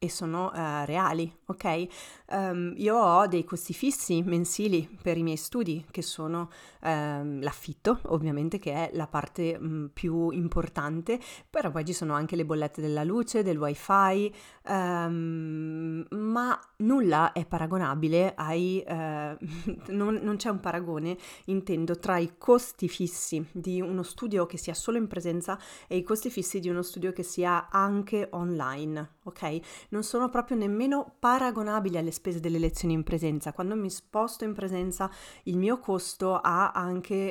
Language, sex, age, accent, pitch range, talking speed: Italian, female, 30-49, native, 165-195 Hz, 155 wpm